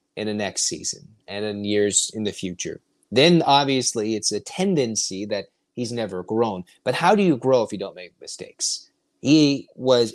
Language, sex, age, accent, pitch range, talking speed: English, male, 30-49, American, 115-165 Hz, 185 wpm